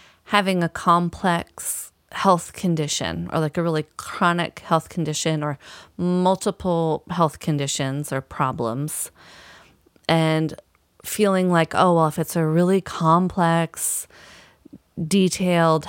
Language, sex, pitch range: English, female, 150-175 Hz